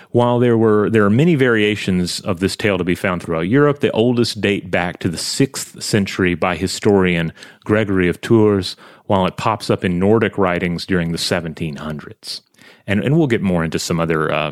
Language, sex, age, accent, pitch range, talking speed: English, male, 30-49, American, 90-110 Hz, 195 wpm